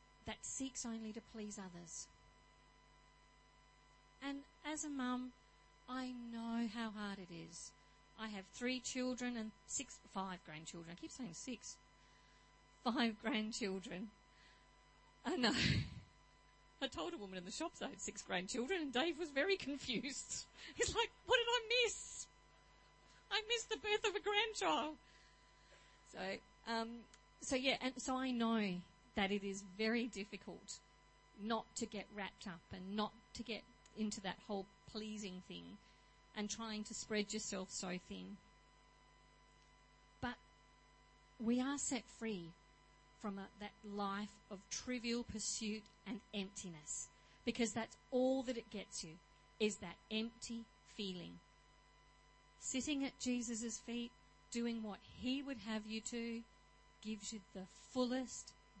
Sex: female